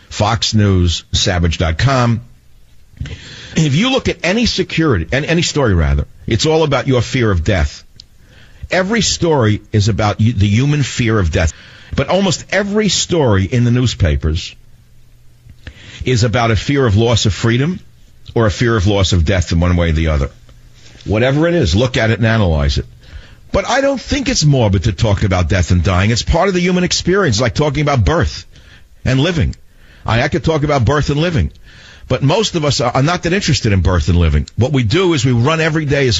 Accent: American